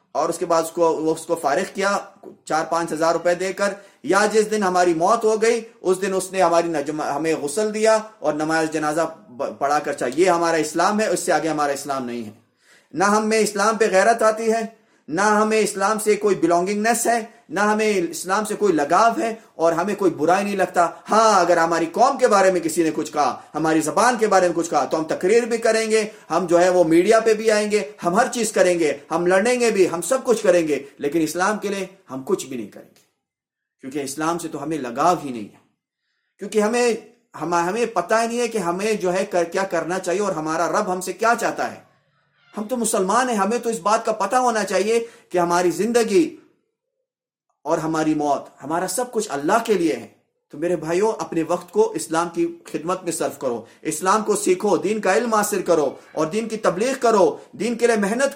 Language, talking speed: Urdu, 230 wpm